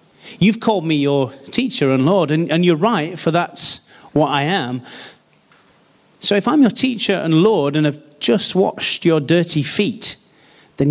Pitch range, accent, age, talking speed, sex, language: 130-160 Hz, British, 40-59, 165 wpm, male, English